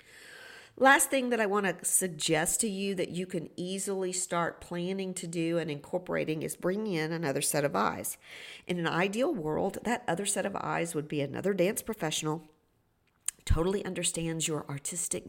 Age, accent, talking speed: 50-69, American, 175 wpm